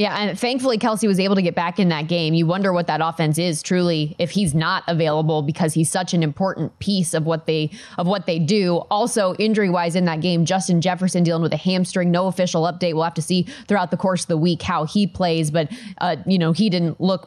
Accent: American